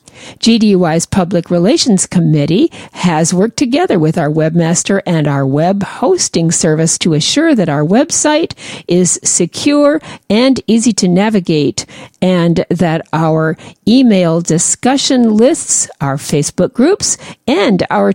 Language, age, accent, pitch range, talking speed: English, 50-69, American, 160-240 Hz, 120 wpm